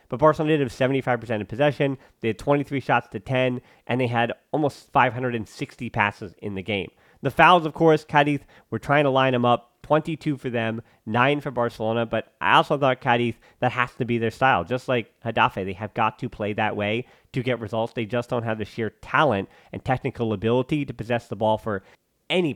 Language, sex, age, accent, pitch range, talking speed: English, male, 30-49, American, 110-140 Hz, 210 wpm